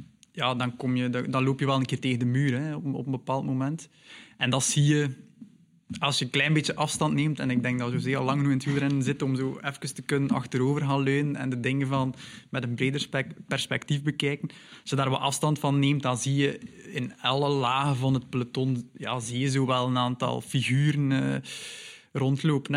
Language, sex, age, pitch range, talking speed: Dutch, male, 20-39, 130-155 Hz, 215 wpm